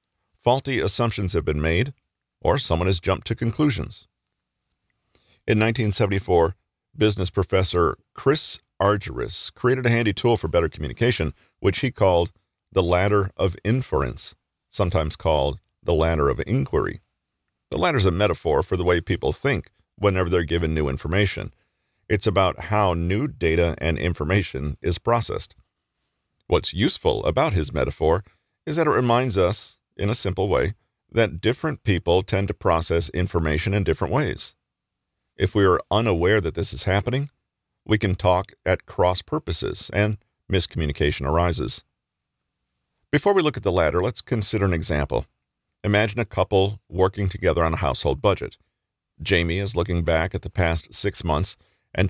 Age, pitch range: 40-59, 85-105 Hz